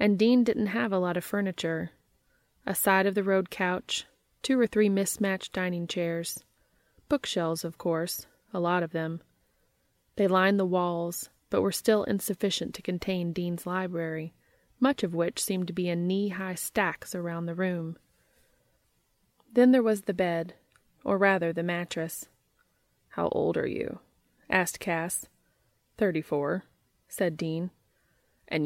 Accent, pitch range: American, 165-205 Hz